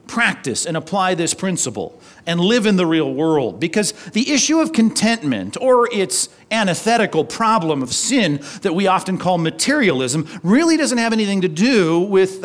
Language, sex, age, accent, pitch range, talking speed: English, male, 40-59, American, 155-210 Hz, 165 wpm